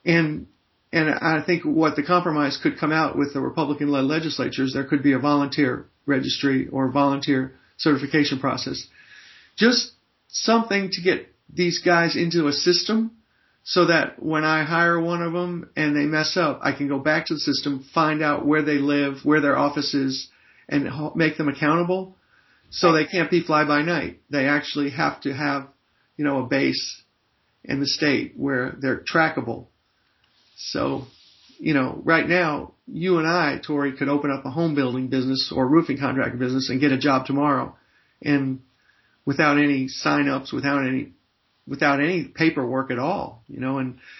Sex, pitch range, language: male, 140-165 Hz, English